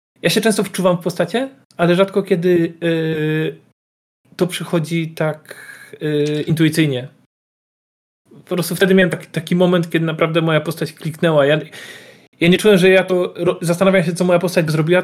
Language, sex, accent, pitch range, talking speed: Polish, male, native, 145-175 Hz, 165 wpm